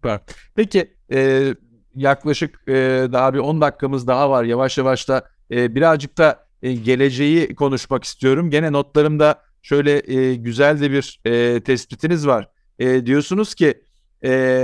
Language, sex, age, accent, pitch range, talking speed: Turkish, male, 50-69, native, 140-165 Hz, 140 wpm